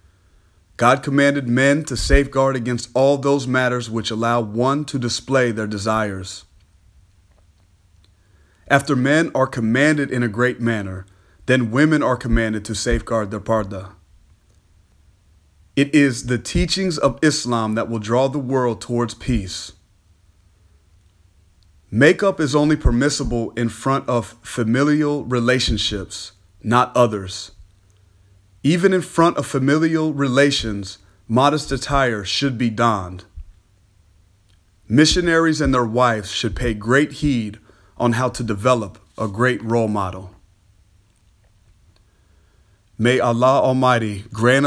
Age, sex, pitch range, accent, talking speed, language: 30-49, male, 95-130 Hz, American, 115 wpm, English